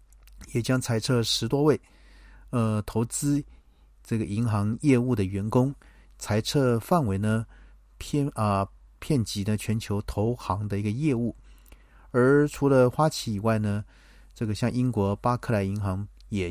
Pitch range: 100-120 Hz